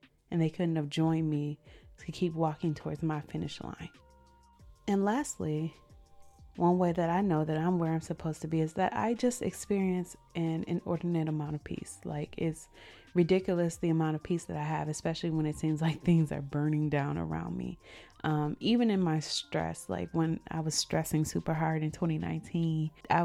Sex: female